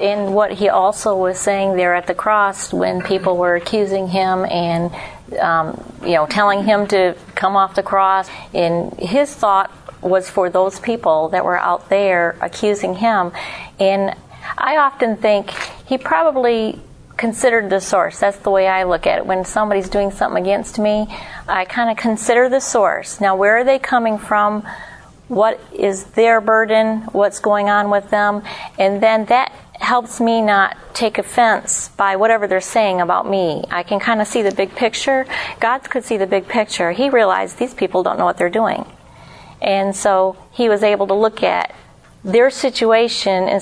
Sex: female